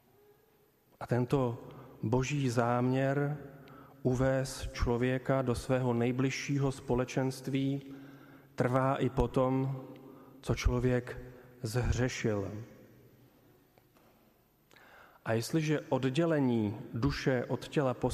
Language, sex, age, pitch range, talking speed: Slovak, male, 40-59, 125-135 Hz, 80 wpm